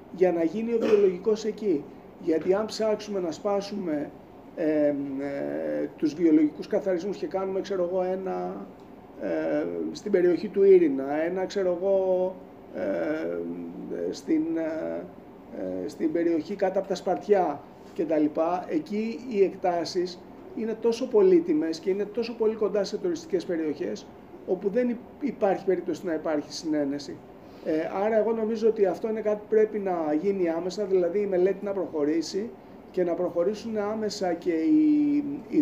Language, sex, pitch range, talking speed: Greek, male, 170-220 Hz, 140 wpm